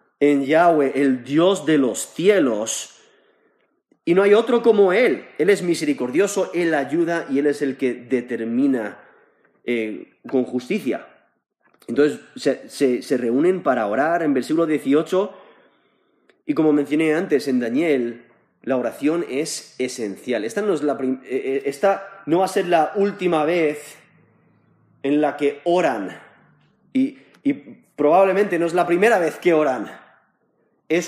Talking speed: 135 wpm